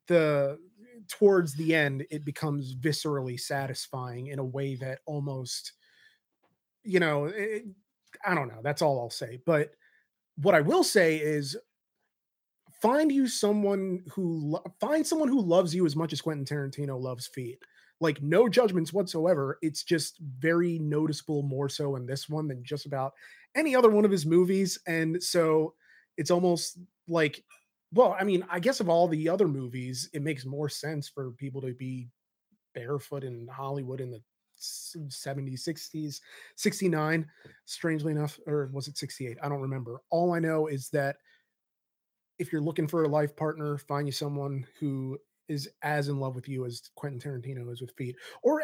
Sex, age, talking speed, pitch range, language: male, 30-49, 165 wpm, 135-175 Hz, English